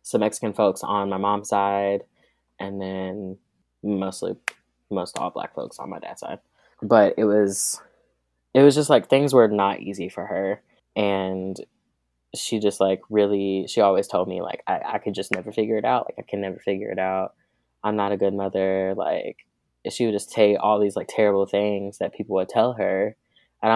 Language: English